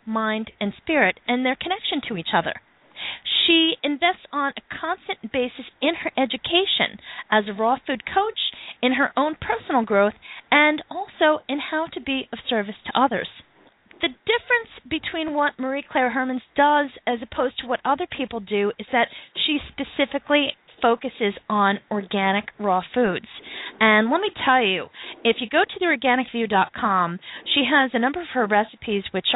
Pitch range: 215-305 Hz